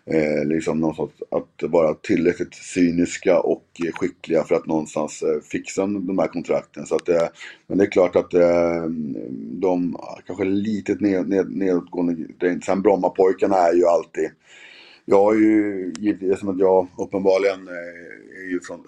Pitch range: 85-100 Hz